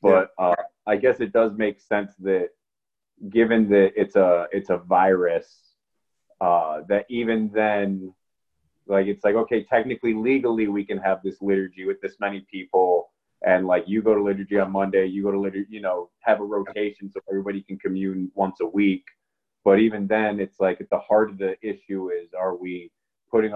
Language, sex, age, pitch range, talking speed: English, male, 30-49, 95-110 Hz, 190 wpm